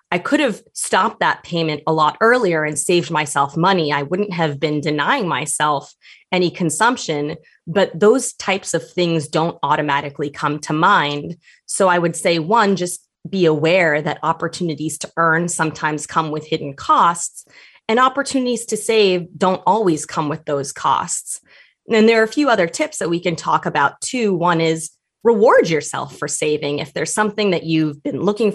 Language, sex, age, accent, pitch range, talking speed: English, female, 20-39, American, 155-190 Hz, 175 wpm